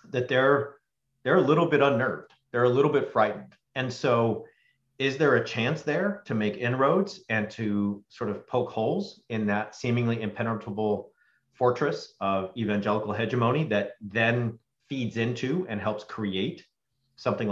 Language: English